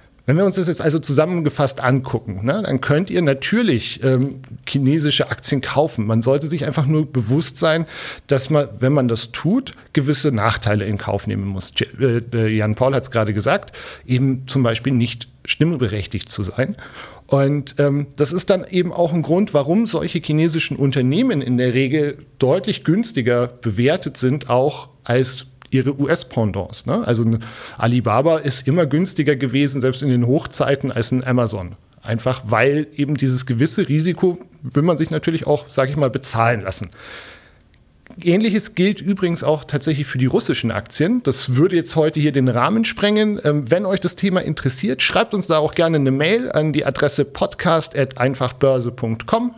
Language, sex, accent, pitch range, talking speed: German, male, German, 125-155 Hz, 160 wpm